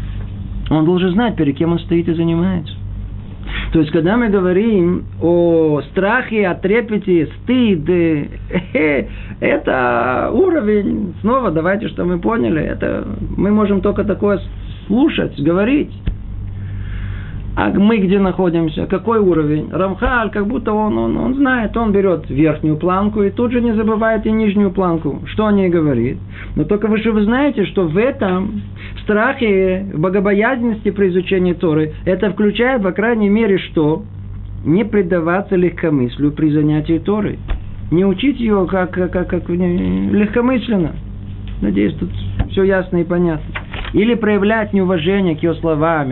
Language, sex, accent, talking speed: Russian, male, native, 140 wpm